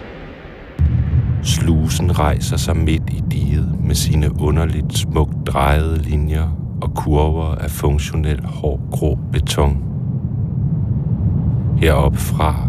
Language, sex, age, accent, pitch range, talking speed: Danish, male, 60-79, native, 75-105 Hz, 90 wpm